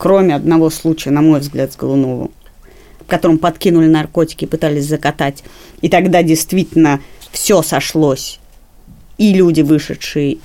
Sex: female